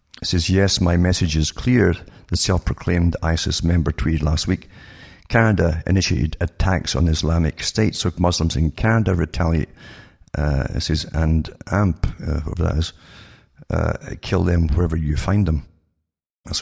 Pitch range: 80-95 Hz